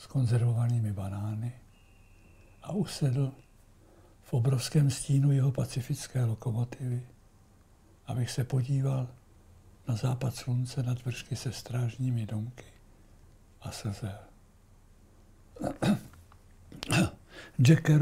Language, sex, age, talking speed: Czech, male, 60-79, 85 wpm